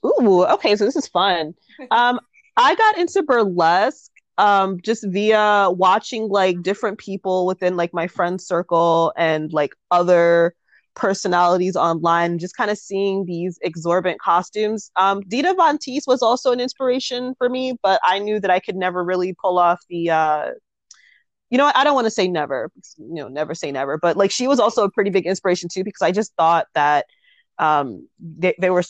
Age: 20-39